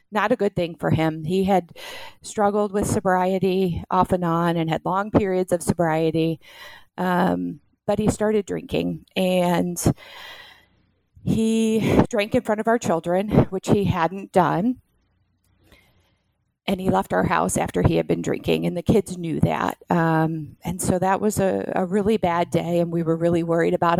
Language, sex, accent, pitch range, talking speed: English, female, American, 160-195 Hz, 170 wpm